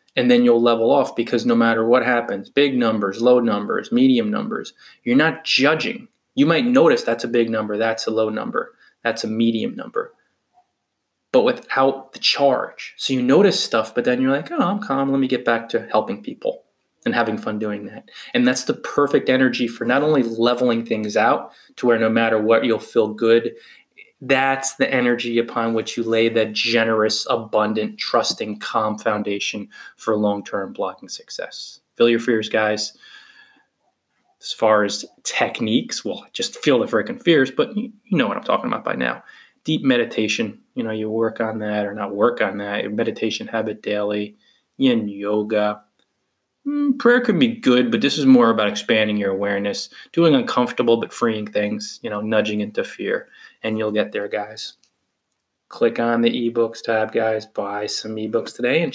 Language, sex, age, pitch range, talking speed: English, male, 20-39, 110-140 Hz, 180 wpm